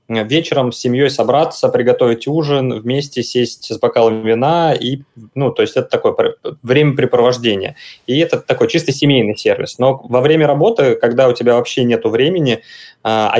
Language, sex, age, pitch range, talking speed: Russian, male, 20-39, 115-140 Hz, 155 wpm